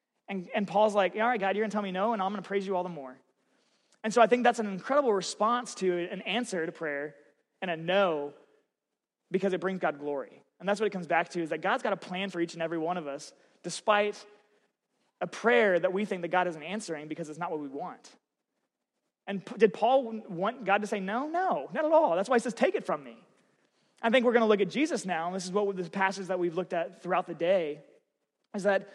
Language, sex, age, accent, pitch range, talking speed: English, male, 30-49, American, 180-225 Hz, 255 wpm